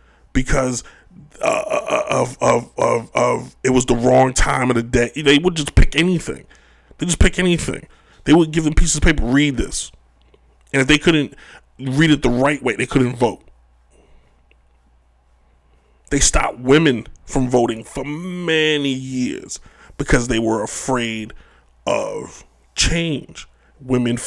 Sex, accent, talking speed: male, American, 150 wpm